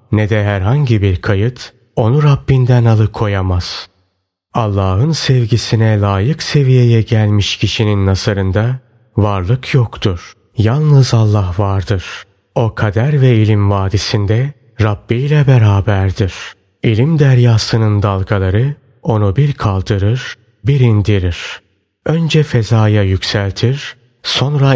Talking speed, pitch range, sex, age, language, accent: 95 wpm, 100-125 Hz, male, 30-49, Turkish, native